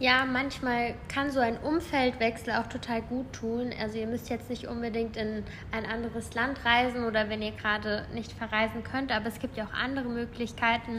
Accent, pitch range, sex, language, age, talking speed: German, 225-255 Hz, female, German, 10-29, 190 wpm